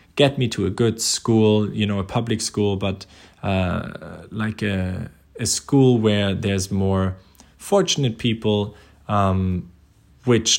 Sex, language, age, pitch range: male, English, 20-39, 95-110 Hz